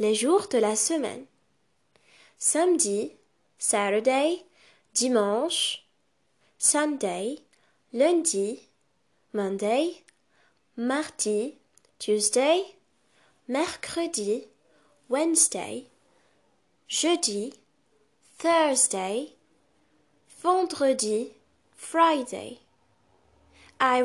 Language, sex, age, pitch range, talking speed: English, female, 20-39, 225-320 Hz, 50 wpm